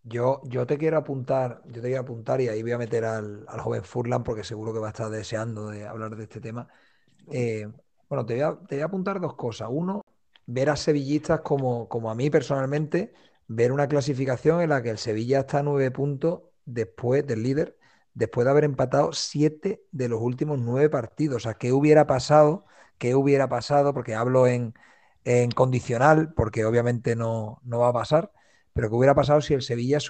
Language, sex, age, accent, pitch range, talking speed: Spanish, male, 40-59, Spanish, 115-145 Hz, 205 wpm